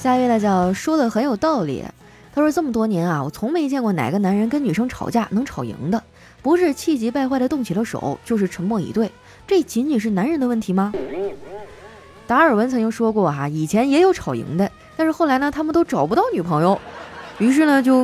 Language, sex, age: Chinese, female, 20-39